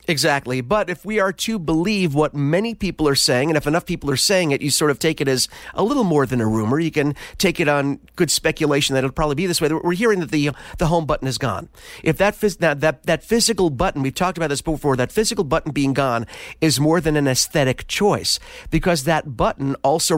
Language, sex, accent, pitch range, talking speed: English, male, American, 140-175 Hz, 240 wpm